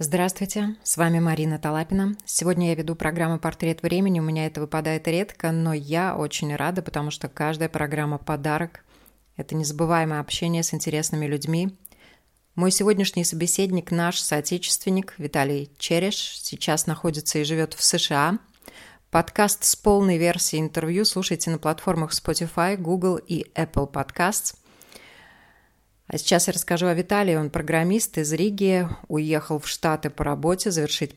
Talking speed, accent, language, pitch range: 140 wpm, native, Russian, 160-190 Hz